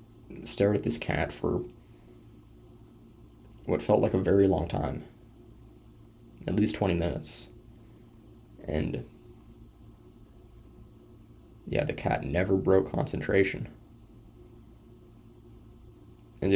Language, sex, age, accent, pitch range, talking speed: English, male, 20-39, American, 95-115 Hz, 85 wpm